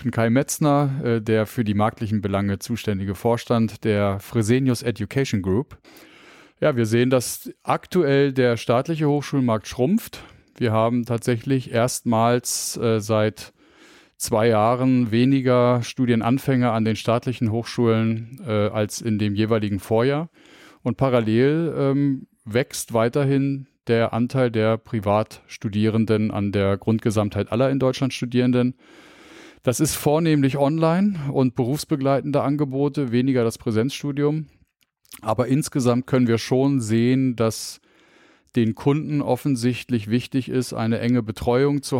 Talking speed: 115 wpm